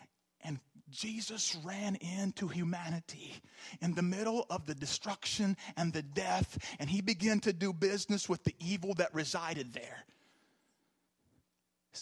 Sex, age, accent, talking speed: male, 40-59, American, 130 wpm